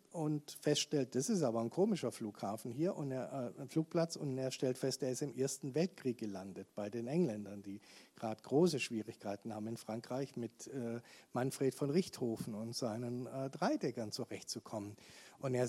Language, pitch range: German, 120-155 Hz